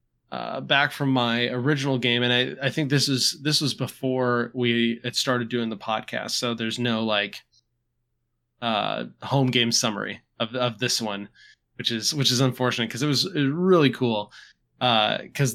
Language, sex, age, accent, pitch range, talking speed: English, male, 20-39, American, 115-130 Hz, 175 wpm